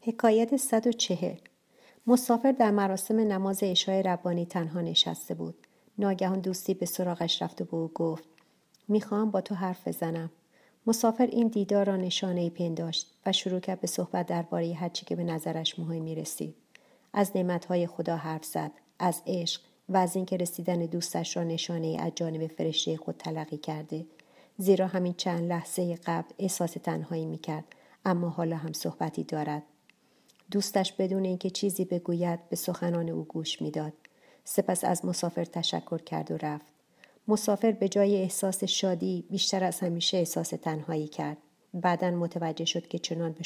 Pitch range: 160-190 Hz